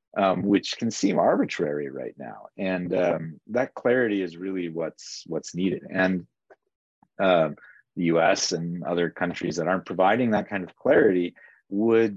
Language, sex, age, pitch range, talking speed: English, male, 30-49, 85-105 Hz, 155 wpm